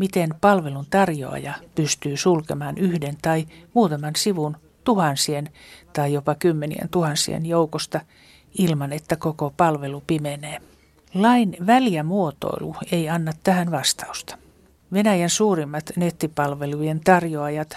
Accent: native